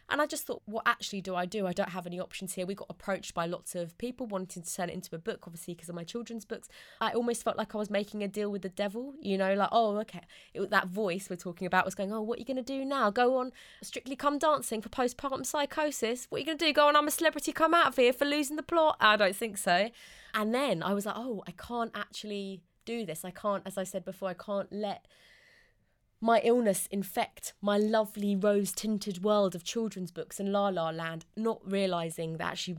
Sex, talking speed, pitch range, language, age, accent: female, 250 wpm, 180-225 Hz, English, 20-39, British